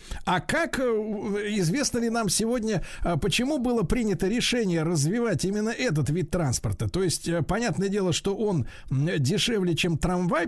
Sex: male